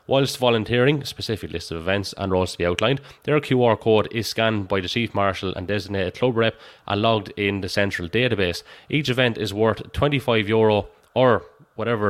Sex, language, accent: male, English, Irish